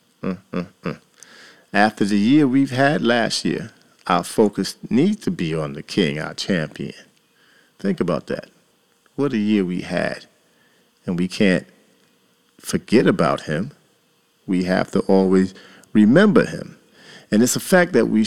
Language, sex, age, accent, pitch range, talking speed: English, male, 40-59, American, 95-140 Hz, 150 wpm